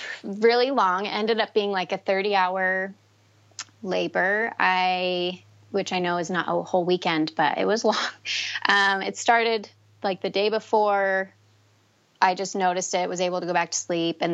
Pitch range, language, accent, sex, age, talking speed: 165-195 Hz, English, American, female, 30-49, 175 wpm